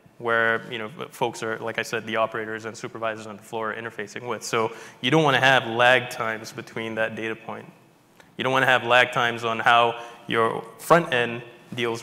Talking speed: 215 wpm